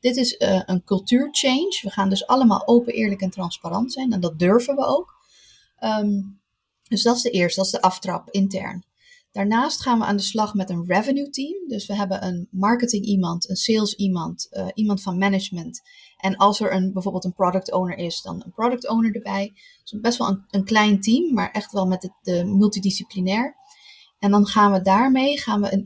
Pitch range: 190-235 Hz